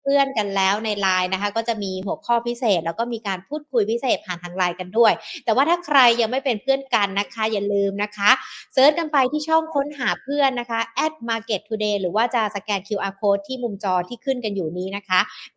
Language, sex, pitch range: Thai, female, 200-260 Hz